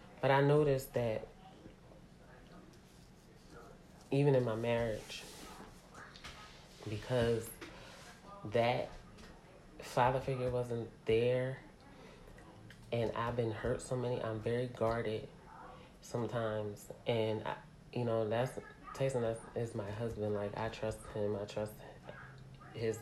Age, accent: 30-49, American